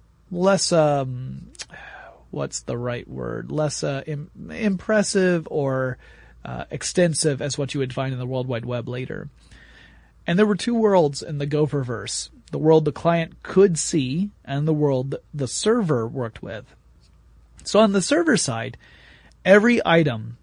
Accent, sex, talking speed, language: American, male, 155 wpm, English